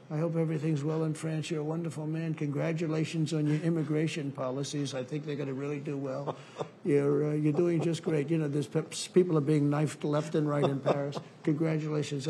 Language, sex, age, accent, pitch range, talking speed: English, male, 60-79, American, 140-165 Hz, 200 wpm